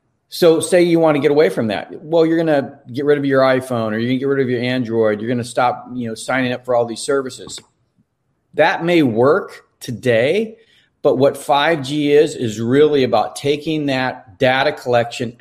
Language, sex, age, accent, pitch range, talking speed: English, male, 40-59, American, 125-155 Hz, 195 wpm